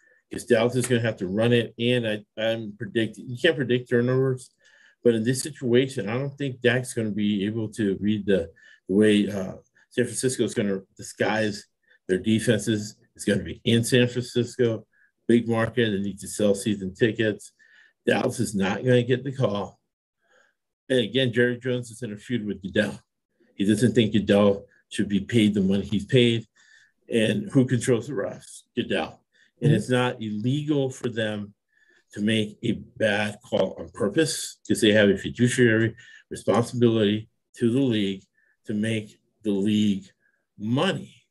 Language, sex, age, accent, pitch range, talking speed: English, male, 50-69, American, 105-125 Hz, 175 wpm